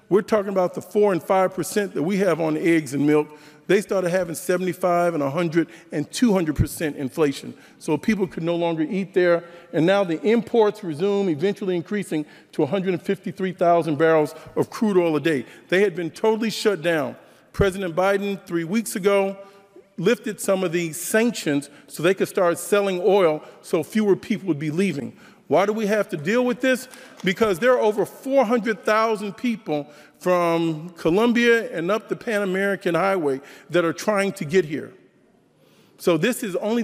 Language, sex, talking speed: English, male, 170 wpm